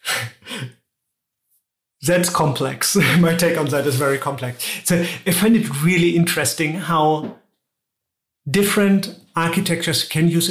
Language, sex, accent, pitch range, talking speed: English, male, German, 140-175 Hz, 115 wpm